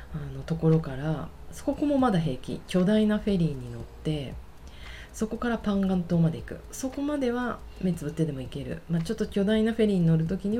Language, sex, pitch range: Japanese, female, 145-205 Hz